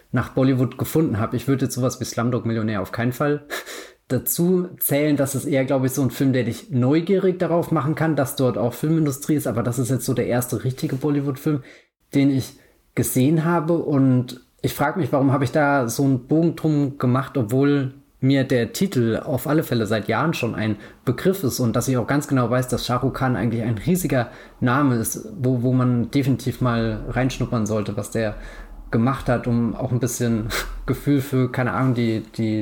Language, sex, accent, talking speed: German, male, German, 200 wpm